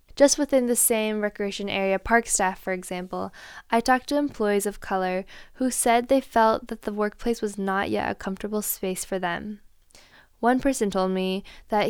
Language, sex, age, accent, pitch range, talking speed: English, female, 10-29, American, 195-235 Hz, 180 wpm